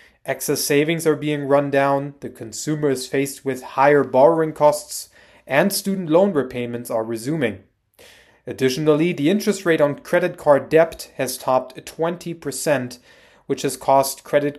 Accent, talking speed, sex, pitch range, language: German, 145 wpm, male, 125-160 Hz, English